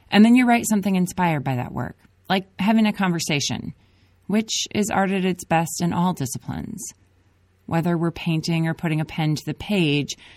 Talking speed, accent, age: 185 wpm, American, 30-49